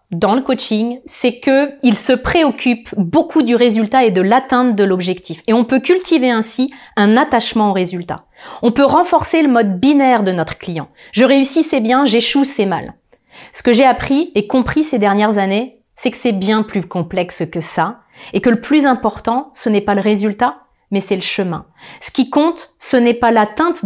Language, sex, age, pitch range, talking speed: French, female, 30-49, 205-260 Hz, 200 wpm